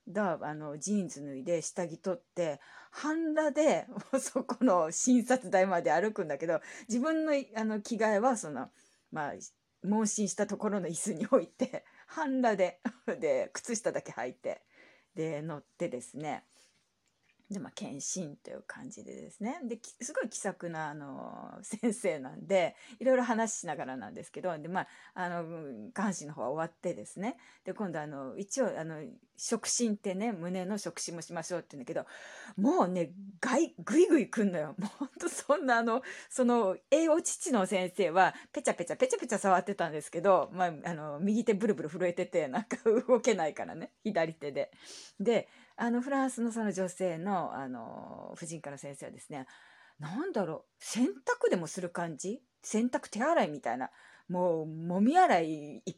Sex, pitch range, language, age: female, 180-250 Hz, Japanese, 30-49